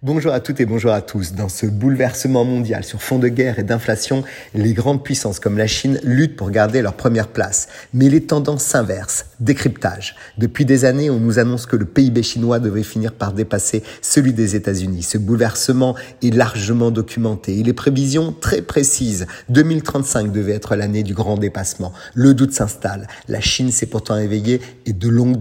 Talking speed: 185 wpm